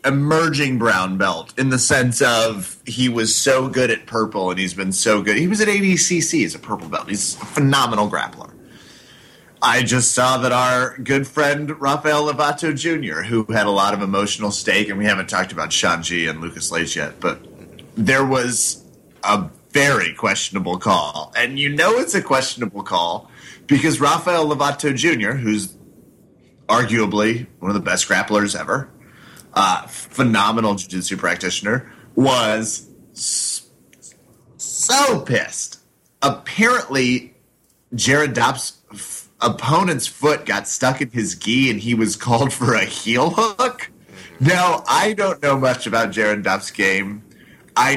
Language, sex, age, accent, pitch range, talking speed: English, male, 30-49, American, 110-150 Hz, 150 wpm